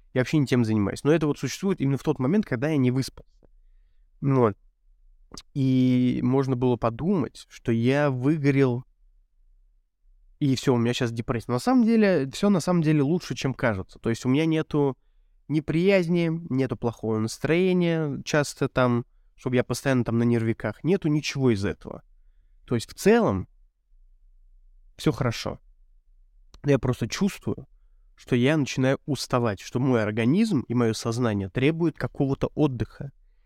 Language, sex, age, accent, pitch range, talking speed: Russian, male, 20-39, native, 90-145 Hz, 150 wpm